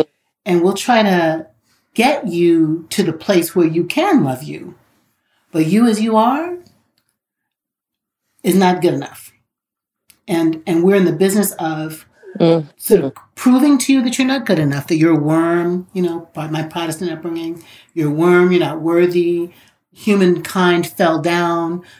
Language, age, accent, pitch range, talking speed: English, 40-59, American, 165-200 Hz, 160 wpm